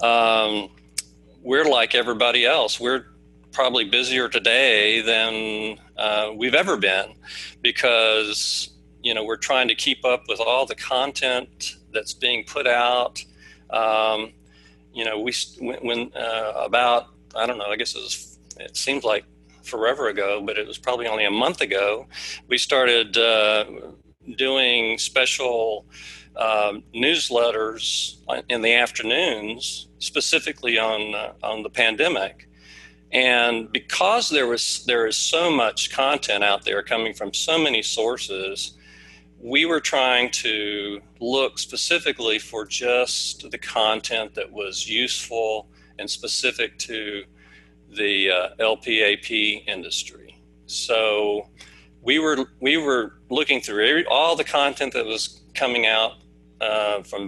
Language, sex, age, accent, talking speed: English, male, 40-59, American, 135 wpm